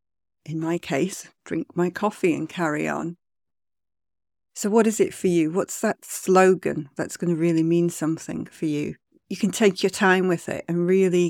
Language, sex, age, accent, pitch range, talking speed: English, female, 50-69, British, 155-185 Hz, 185 wpm